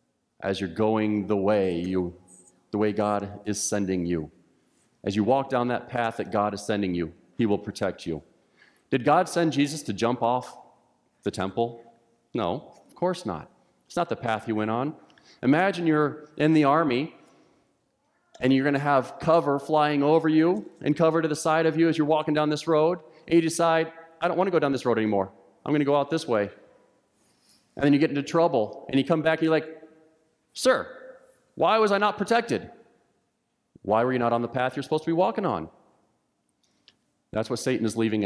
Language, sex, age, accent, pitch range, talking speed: English, male, 40-59, American, 110-160 Hz, 200 wpm